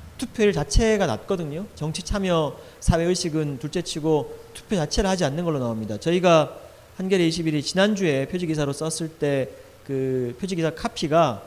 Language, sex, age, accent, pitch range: Korean, male, 40-59, native, 140-195 Hz